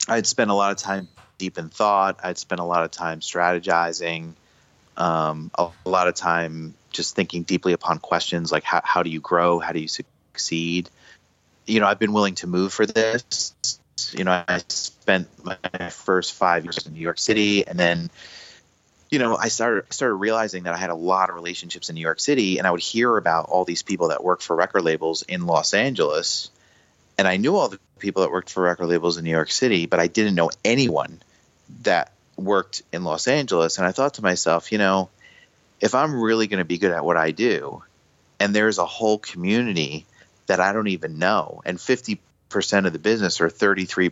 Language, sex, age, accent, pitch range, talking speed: English, male, 30-49, American, 85-100 Hz, 210 wpm